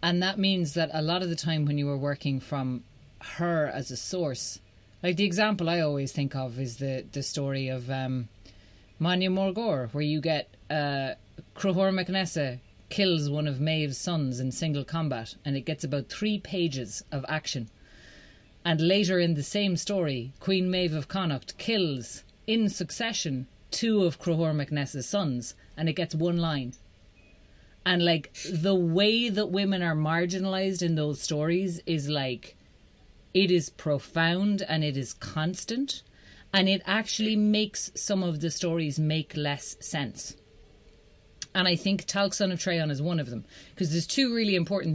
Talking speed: 165 wpm